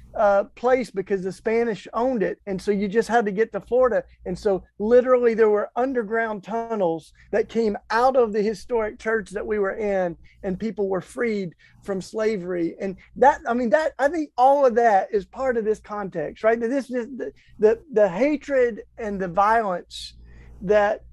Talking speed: 190 wpm